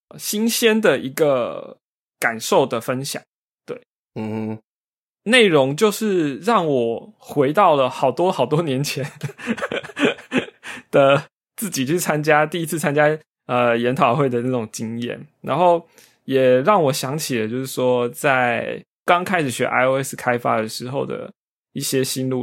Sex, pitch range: male, 125-170 Hz